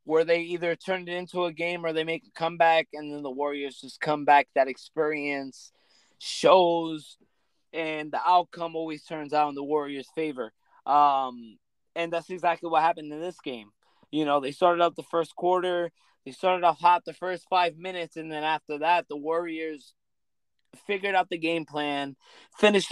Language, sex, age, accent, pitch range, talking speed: English, male, 20-39, American, 155-180 Hz, 185 wpm